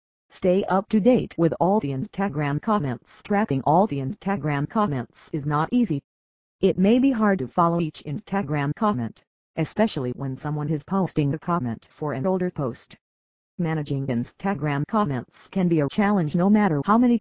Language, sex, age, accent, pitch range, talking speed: English, female, 50-69, American, 135-185 Hz, 165 wpm